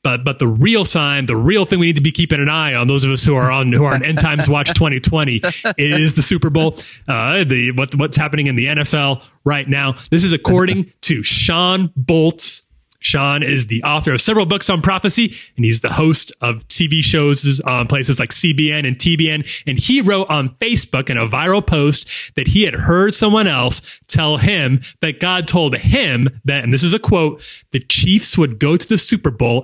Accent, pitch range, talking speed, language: American, 130-165 Hz, 215 wpm, English